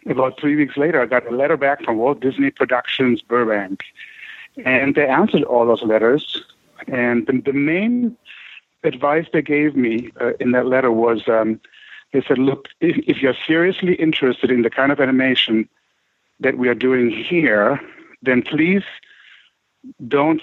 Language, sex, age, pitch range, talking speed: English, male, 60-79, 120-150 Hz, 155 wpm